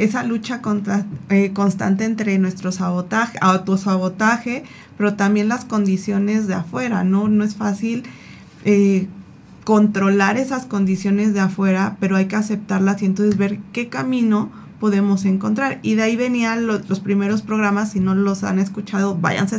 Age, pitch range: 20-39, 195-220 Hz